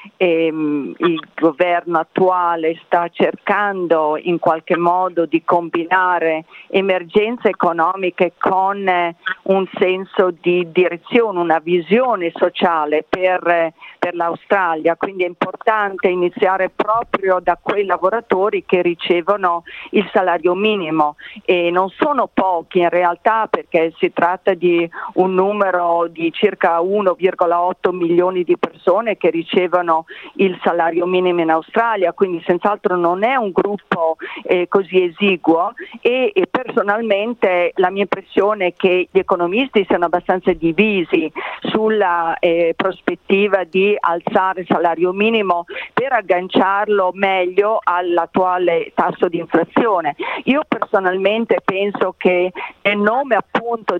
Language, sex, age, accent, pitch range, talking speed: Italian, female, 40-59, native, 175-205 Hz, 115 wpm